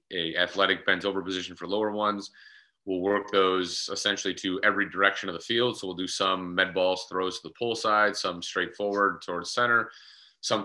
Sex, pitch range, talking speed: male, 90-105 Hz, 195 wpm